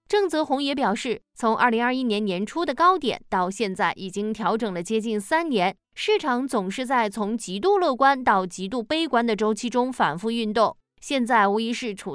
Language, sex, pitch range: Chinese, female, 210-280 Hz